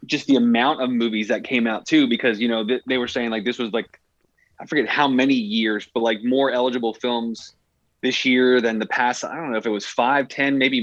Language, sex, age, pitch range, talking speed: English, male, 20-39, 110-130 Hz, 240 wpm